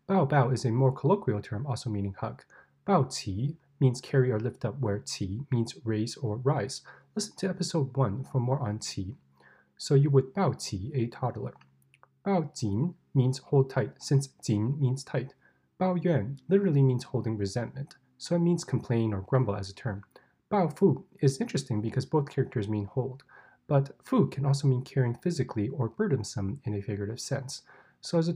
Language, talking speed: English, 185 wpm